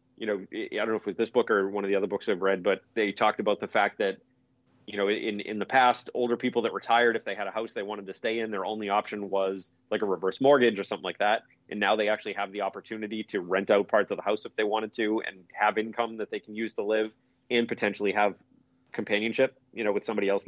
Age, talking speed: 30-49, 275 wpm